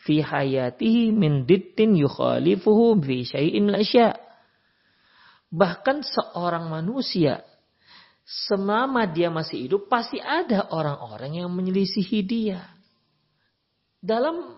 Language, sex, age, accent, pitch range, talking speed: Indonesian, male, 40-59, native, 145-220 Hz, 80 wpm